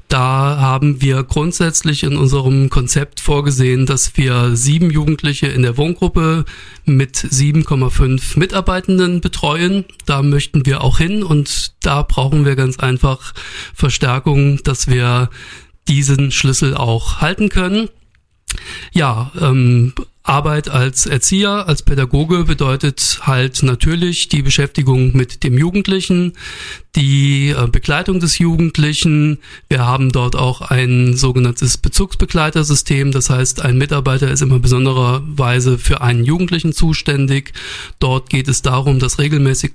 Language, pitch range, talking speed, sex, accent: German, 130-150 Hz, 125 wpm, male, German